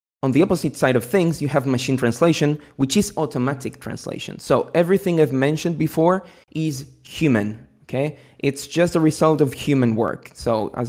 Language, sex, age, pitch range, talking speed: English, male, 20-39, 120-150 Hz, 170 wpm